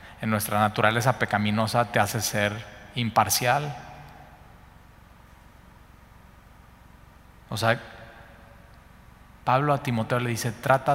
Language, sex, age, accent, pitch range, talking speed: Spanish, male, 40-59, Mexican, 105-120 Hz, 90 wpm